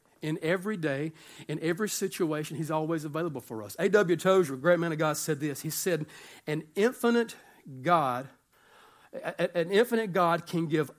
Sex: male